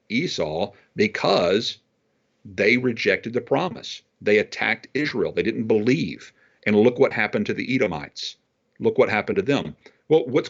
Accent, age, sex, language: American, 50-69, male, English